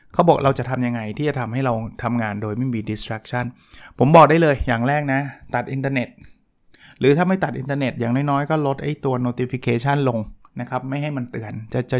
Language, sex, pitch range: Thai, male, 115-135 Hz